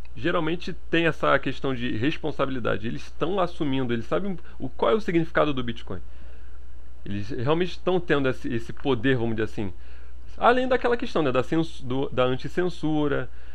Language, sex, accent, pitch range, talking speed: Portuguese, male, Brazilian, 110-160 Hz, 165 wpm